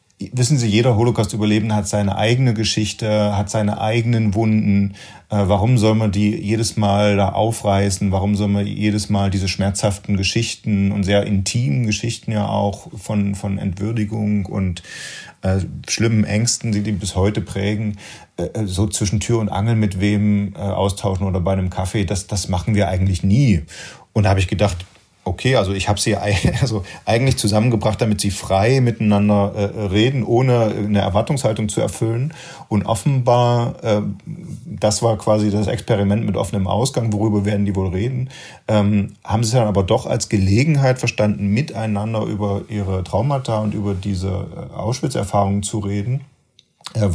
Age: 30-49